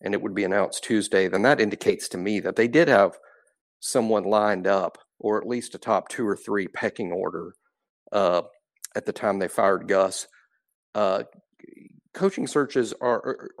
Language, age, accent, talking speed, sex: English, 50-69, American, 170 wpm, male